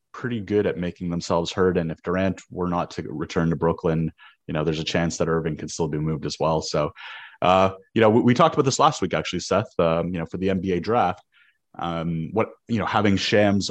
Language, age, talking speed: English, 30-49, 235 wpm